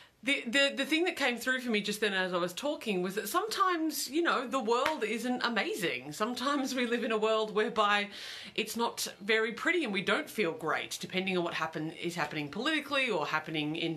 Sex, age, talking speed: female, 30-49, 215 wpm